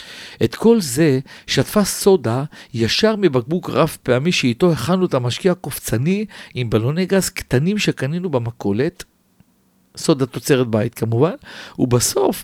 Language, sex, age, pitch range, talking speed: Hebrew, male, 50-69, 120-180 Hz, 120 wpm